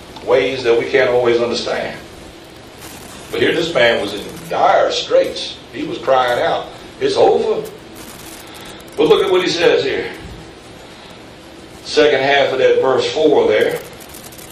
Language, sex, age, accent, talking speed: English, male, 60-79, American, 140 wpm